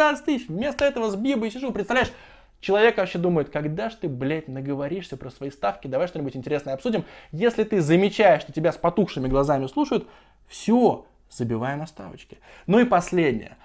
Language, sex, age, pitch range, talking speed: Russian, male, 20-39, 155-225 Hz, 165 wpm